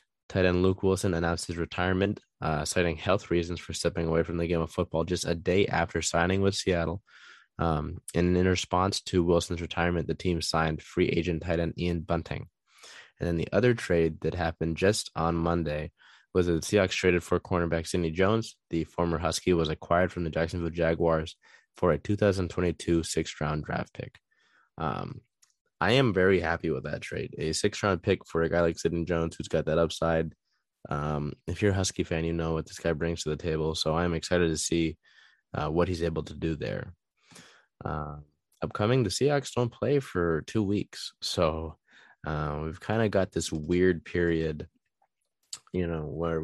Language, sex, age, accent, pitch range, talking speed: English, male, 20-39, American, 80-90 Hz, 190 wpm